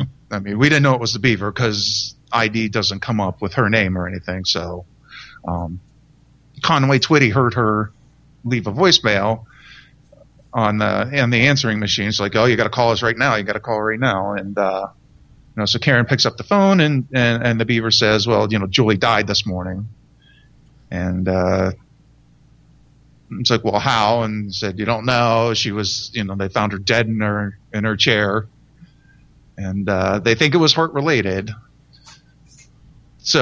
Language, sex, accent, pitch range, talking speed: English, male, American, 105-135 Hz, 190 wpm